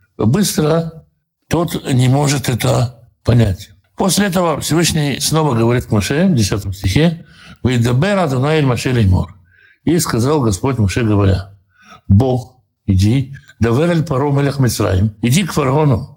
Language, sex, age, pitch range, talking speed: Russian, male, 60-79, 110-160 Hz, 125 wpm